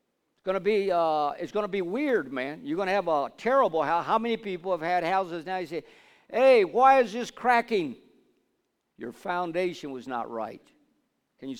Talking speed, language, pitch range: 195 wpm, English, 170-215 Hz